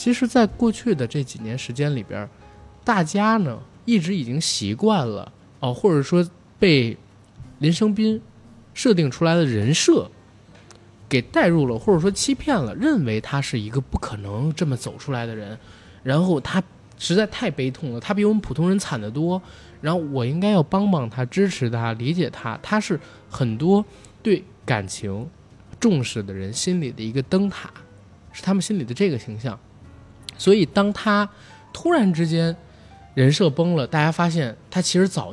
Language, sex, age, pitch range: Chinese, male, 20-39, 115-185 Hz